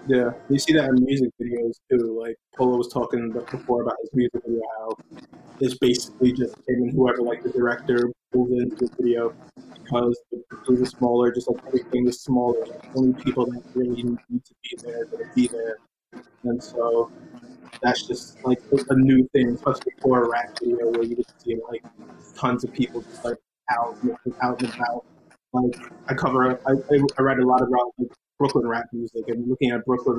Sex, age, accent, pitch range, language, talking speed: male, 20-39, American, 120-130 Hz, English, 205 wpm